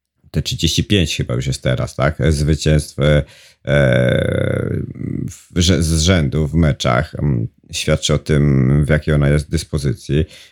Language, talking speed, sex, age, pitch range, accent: Polish, 110 wpm, male, 50-69, 70-90 Hz, native